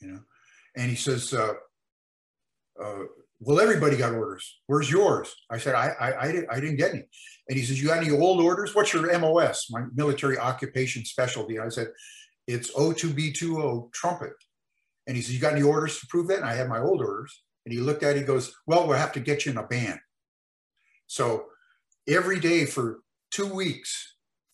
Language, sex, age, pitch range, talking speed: English, male, 50-69, 130-160 Hz, 200 wpm